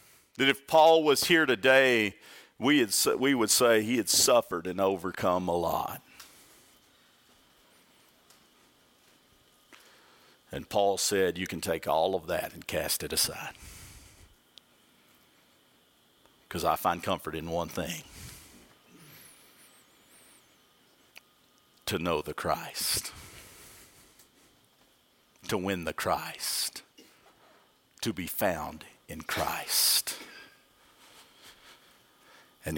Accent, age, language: American, 50-69, English